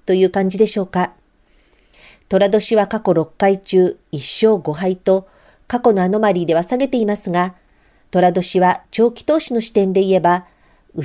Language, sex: Japanese, female